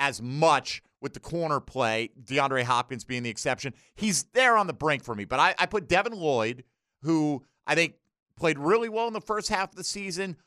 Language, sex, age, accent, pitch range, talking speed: English, male, 50-69, American, 135-180 Hz, 210 wpm